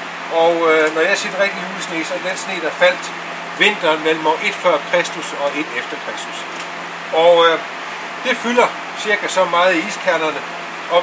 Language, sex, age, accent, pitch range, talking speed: Danish, male, 60-79, native, 155-195 Hz, 185 wpm